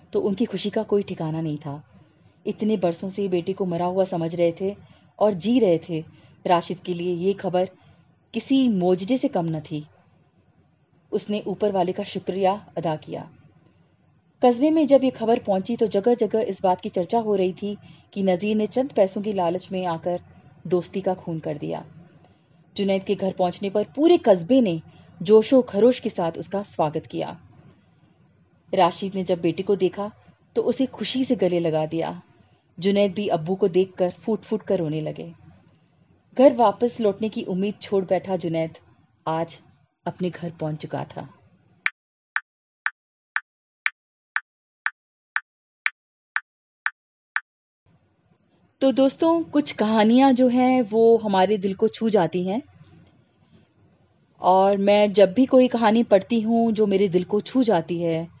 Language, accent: Hindi, native